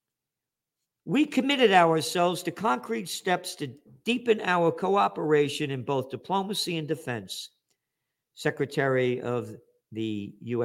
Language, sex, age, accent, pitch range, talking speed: English, male, 50-69, American, 125-200 Hz, 105 wpm